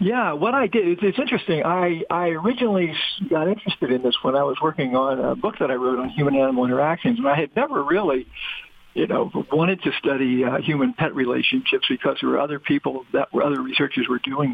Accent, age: American, 60-79